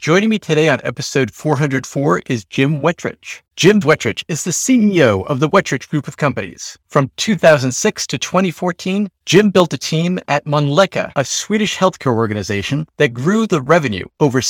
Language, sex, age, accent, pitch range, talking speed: English, male, 40-59, American, 130-180 Hz, 180 wpm